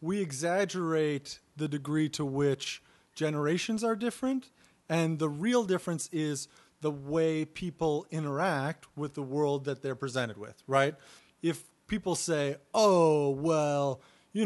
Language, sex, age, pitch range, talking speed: English, male, 30-49, 145-185 Hz, 135 wpm